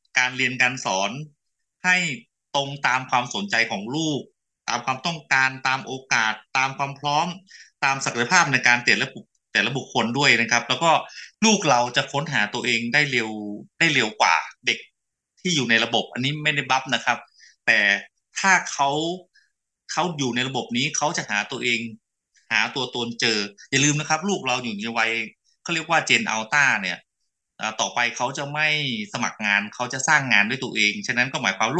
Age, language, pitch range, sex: 30-49, Thai, 120-155 Hz, male